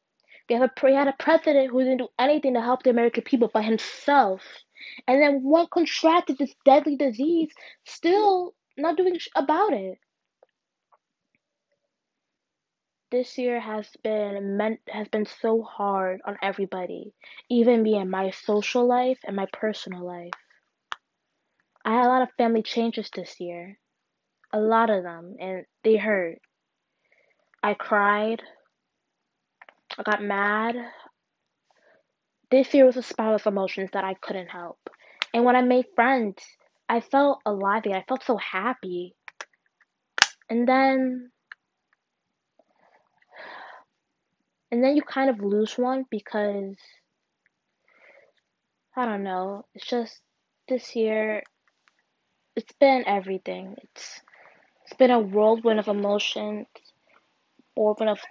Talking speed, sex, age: 130 wpm, female, 20-39